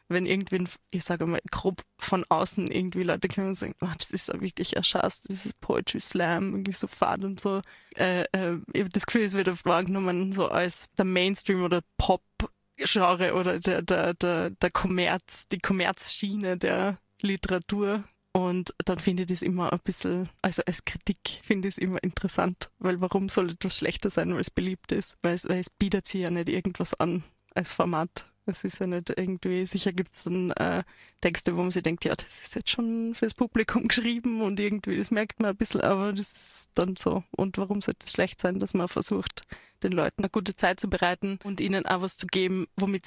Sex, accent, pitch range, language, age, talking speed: female, German, 180-200 Hz, German, 20-39, 205 wpm